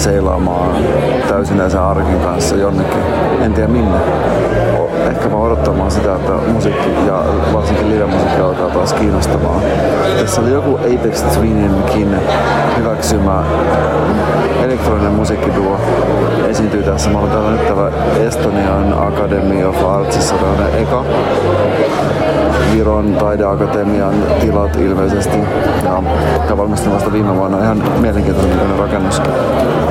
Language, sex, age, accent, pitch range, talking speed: Finnish, male, 30-49, native, 80-100 Hz, 105 wpm